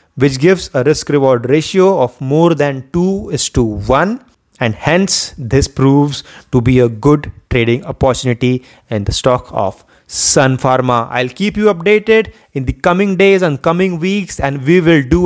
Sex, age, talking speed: male, 30-49, 175 wpm